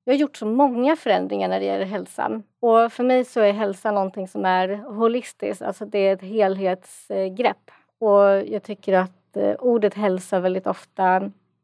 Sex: female